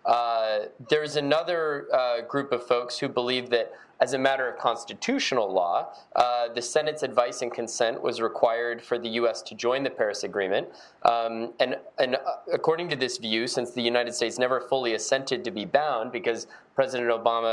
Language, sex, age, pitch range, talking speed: English, male, 20-39, 110-140 Hz, 185 wpm